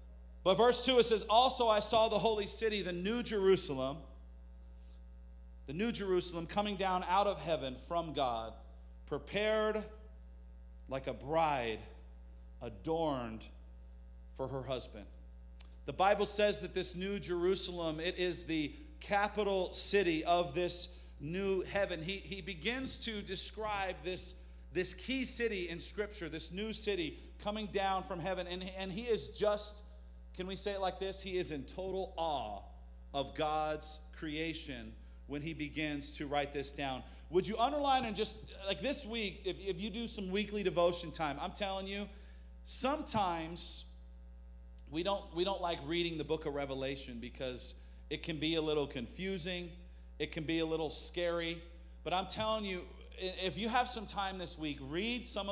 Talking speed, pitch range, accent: 160 wpm, 130-195 Hz, American